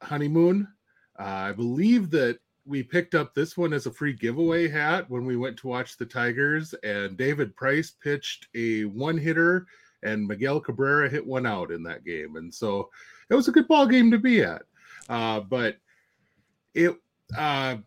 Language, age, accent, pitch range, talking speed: English, 30-49, American, 125-165 Hz, 175 wpm